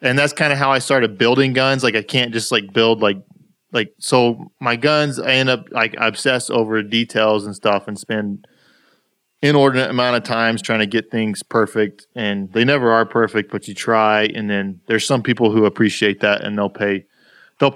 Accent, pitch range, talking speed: American, 110-135 Hz, 205 wpm